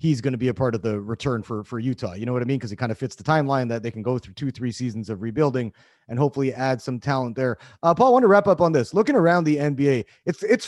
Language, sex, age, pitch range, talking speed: English, male, 30-49, 130-160 Hz, 310 wpm